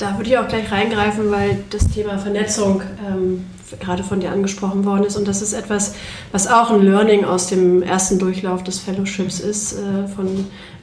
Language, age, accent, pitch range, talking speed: German, 30-49, German, 190-205 Hz, 185 wpm